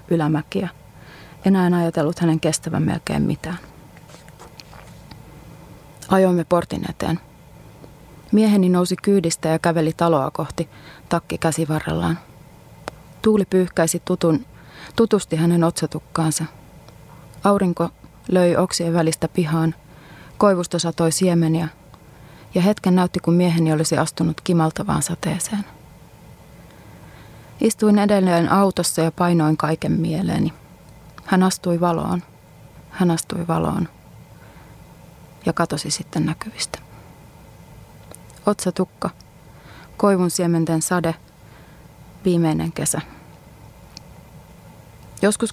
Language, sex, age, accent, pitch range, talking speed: Finnish, female, 30-49, native, 160-185 Hz, 90 wpm